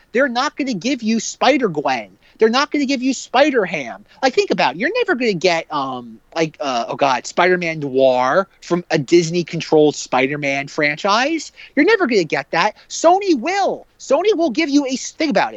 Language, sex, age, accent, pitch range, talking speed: English, male, 30-49, American, 180-275 Hz, 210 wpm